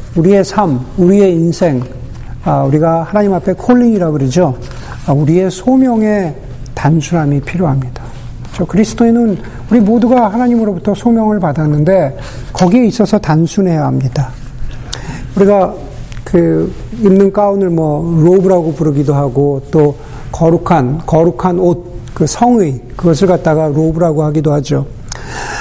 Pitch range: 140-195 Hz